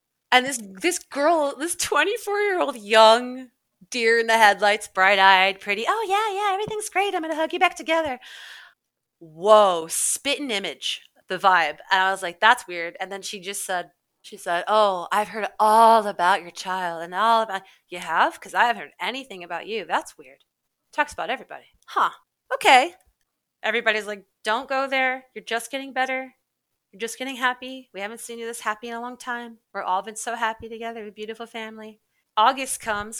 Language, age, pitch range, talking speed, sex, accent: English, 30-49, 195-250 Hz, 185 wpm, female, American